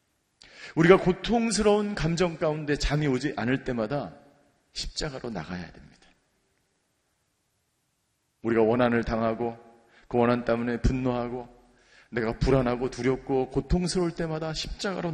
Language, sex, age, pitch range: Korean, male, 40-59, 140-190 Hz